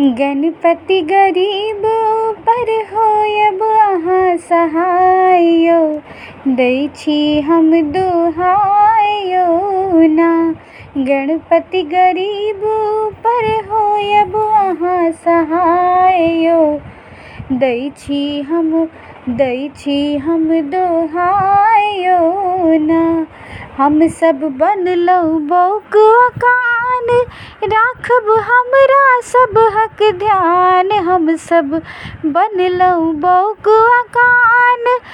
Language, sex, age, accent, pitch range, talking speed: Hindi, female, 20-39, native, 330-430 Hz, 55 wpm